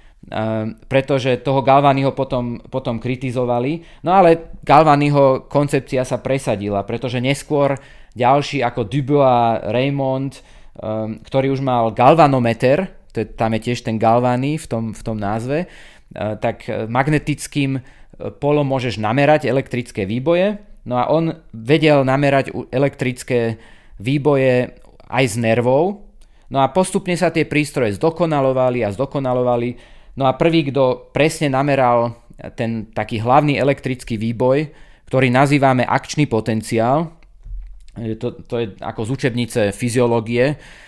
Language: Slovak